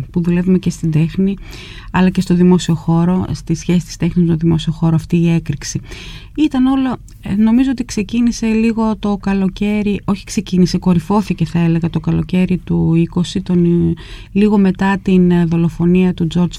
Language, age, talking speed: Greek, 30-49, 165 wpm